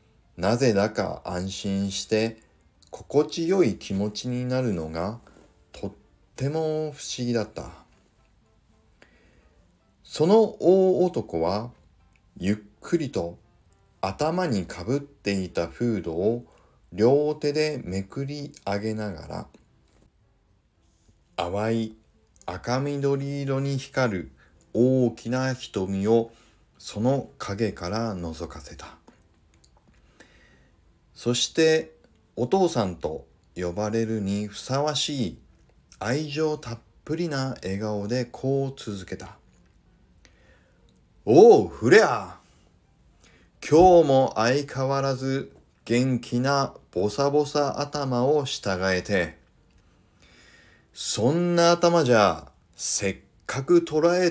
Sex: male